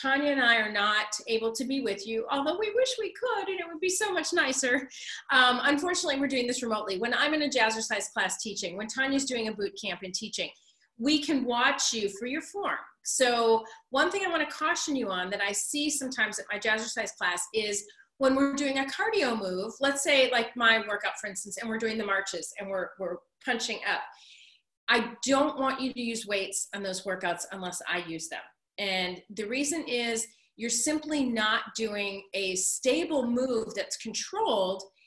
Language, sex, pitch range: English, female, 205-275 Hz